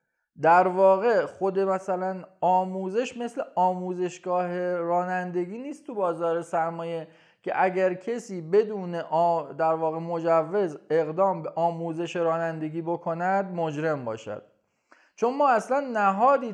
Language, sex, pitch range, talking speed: Persian, male, 155-205 Hz, 115 wpm